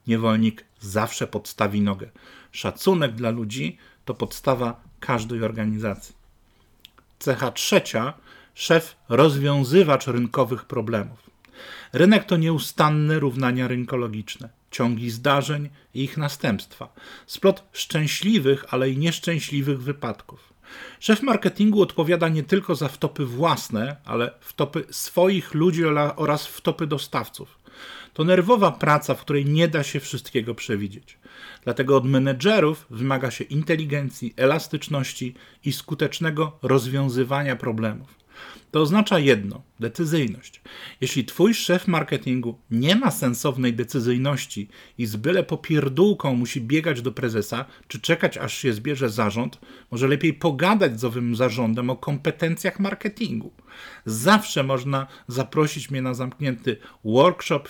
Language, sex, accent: Polish, male, native